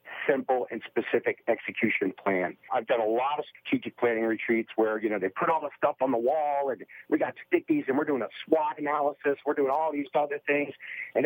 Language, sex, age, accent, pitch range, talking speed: English, male, 50-69, American, 115-150 Hz, 220 wpm